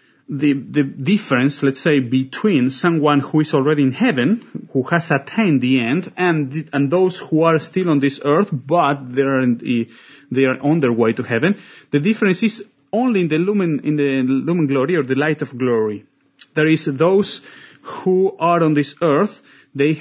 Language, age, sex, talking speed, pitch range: English, 40-59, male, 190 wpm, 135-165 Hz